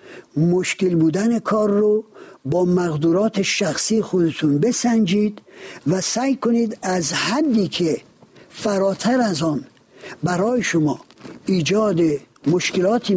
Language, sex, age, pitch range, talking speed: Persian, male, 60-79, 170-220 Hz, 100 wpm